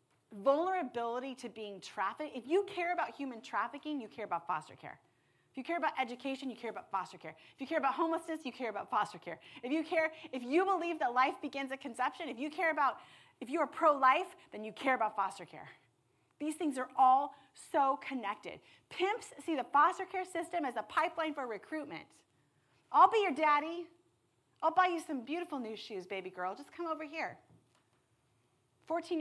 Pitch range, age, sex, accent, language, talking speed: 205-320 Hz, 30-49, female, American, English, 195 wpm